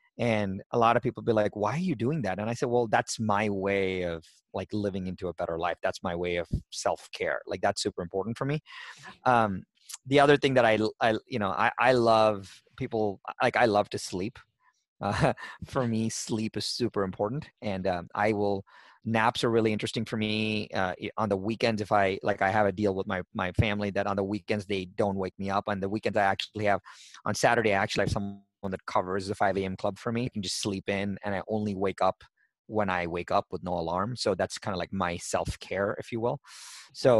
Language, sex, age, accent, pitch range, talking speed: English, male, 30-49, American, 95-110 Hz, 235 wpm